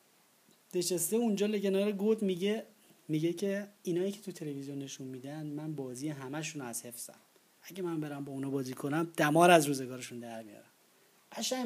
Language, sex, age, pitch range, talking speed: Persian, male, 30-49, 135-170 Hz, 160 wpm